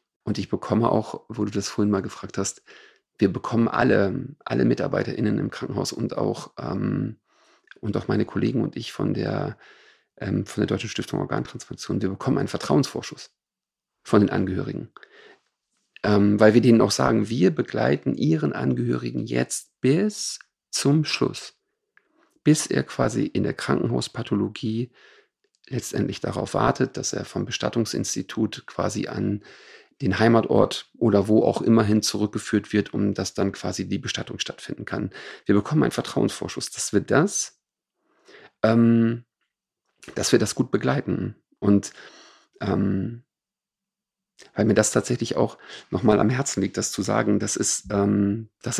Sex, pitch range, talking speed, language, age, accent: male, 100-120 Hz, 145 wpm, German, 40-59, German